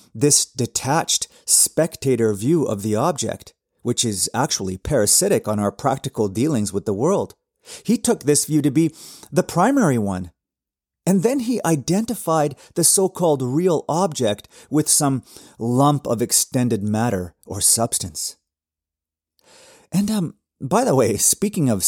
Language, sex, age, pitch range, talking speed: English, male, 30-49, 105-170 Hz, 135 wpm